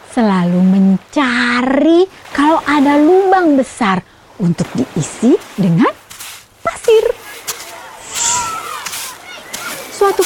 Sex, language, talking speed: female, Indonesian, 65 wpm